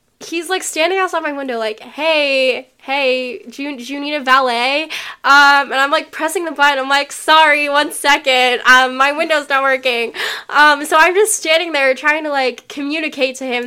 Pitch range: 255-310 Hz